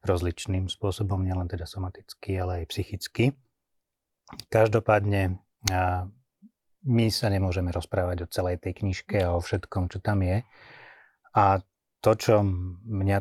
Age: 30-49